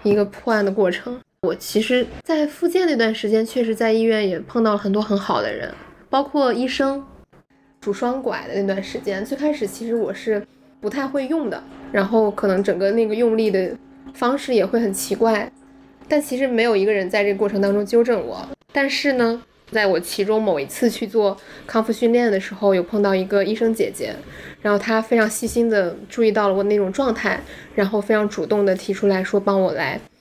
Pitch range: 200-240 Hz